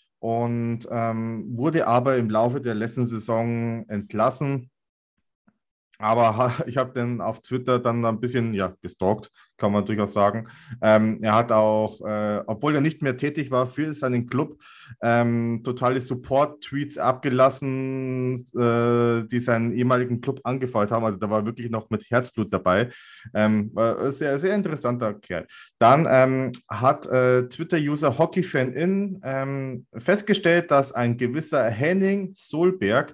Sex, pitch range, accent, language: male, 115-140 Hz, German, German